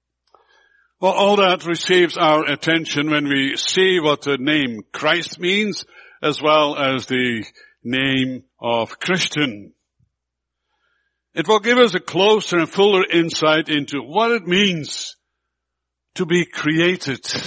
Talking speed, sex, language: 125 wpm, male, English